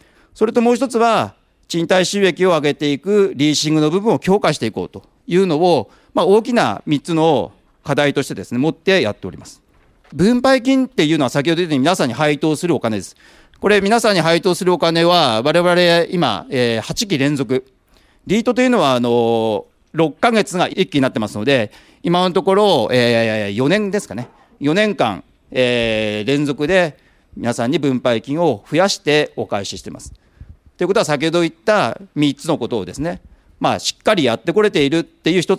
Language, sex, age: Japanese, male, 40-59